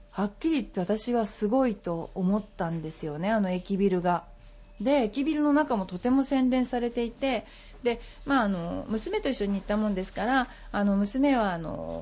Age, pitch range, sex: 40-59, 185-265 Hz, female